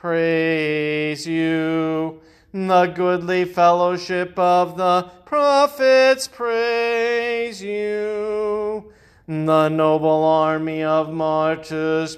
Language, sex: English, male